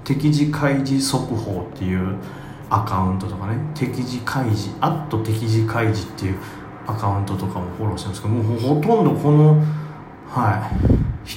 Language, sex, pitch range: Japanese, male, 105-145 Hz